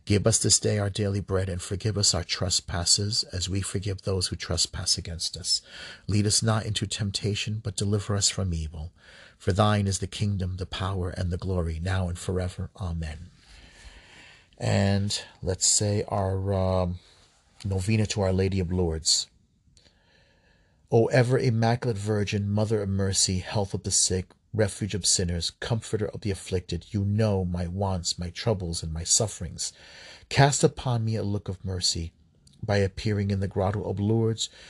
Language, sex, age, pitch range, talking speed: English, male, 40-59, 90-110 Hz, 165 wpm